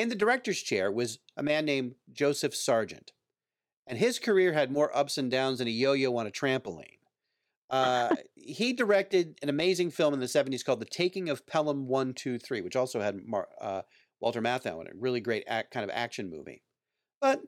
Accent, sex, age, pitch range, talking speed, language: American, male, 40-59, 125-170 Hz, 200 wpm, English